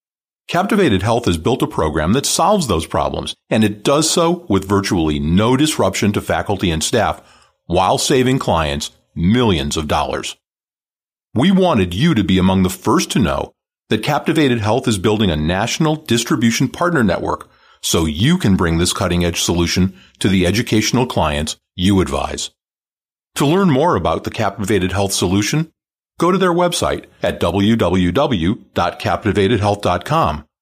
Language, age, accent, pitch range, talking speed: English, 40-59, American, 90-120 Hz, 145 wpm